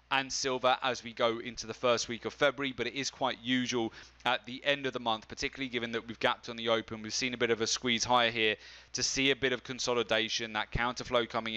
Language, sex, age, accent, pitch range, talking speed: English, male, 30-49, British, 115-130 Hz, 250 wpm